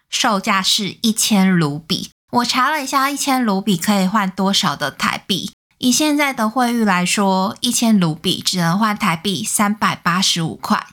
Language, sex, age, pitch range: Chinese, female, 20-39, 185-235 Hz